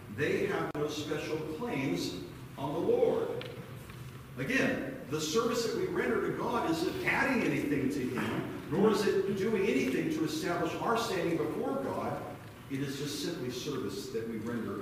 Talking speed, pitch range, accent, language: 160 wpm, 120-165 Hz, American, English